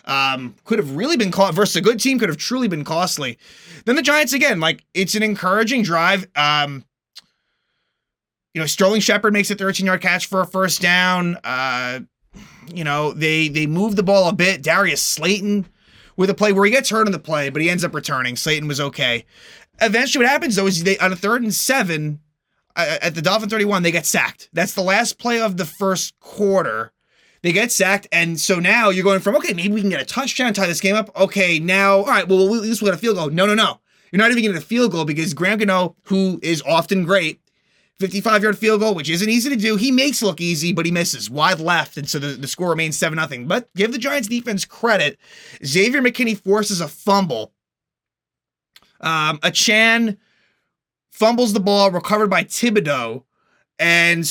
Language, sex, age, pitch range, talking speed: English, male, 20-39, 165-215 Hz, 210 wpm